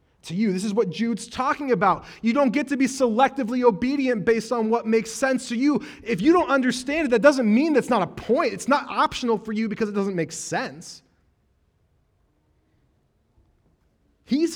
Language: English